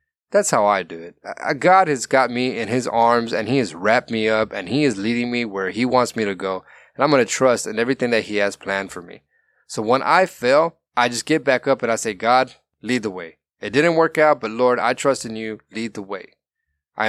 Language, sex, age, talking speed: English, male, 20-39, 255 wpm